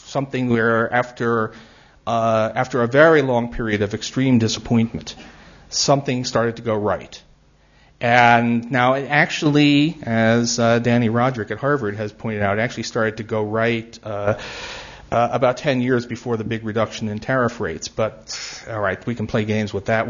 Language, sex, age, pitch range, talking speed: English, male, 40-59, 110-145 Hz, 170 wpm